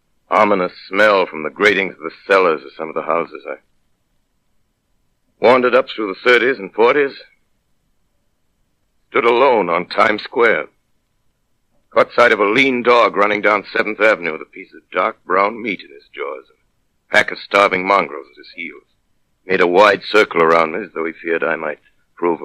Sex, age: male, 60-79